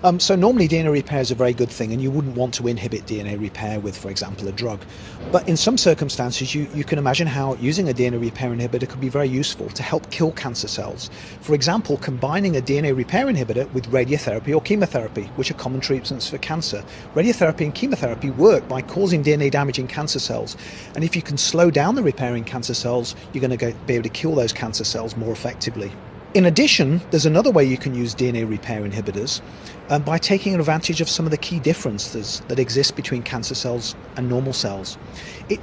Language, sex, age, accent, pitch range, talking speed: English, male, 40-59, British, 120-165 Hz, 215 wpm